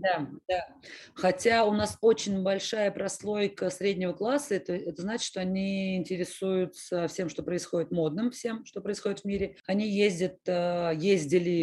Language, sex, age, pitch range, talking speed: Russian, female, 30-49, 175-205 Hz, 145 wpm